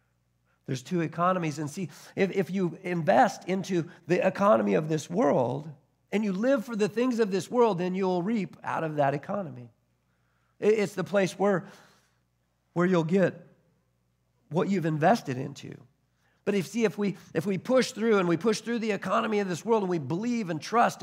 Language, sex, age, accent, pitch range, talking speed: English, male, 50-69, American, 125-190 Hz, 185 wpm